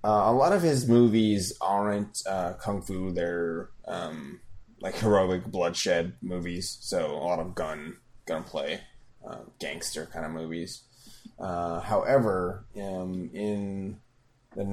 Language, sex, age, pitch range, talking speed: English, male, 20-39, 90-105 Hz, 130 wpm